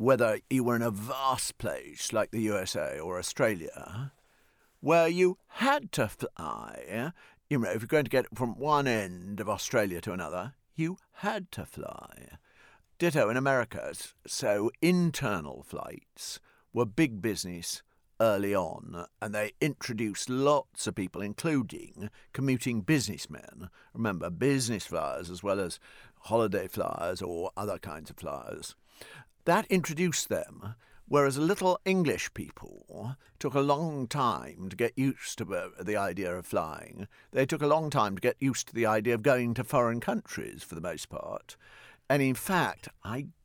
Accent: British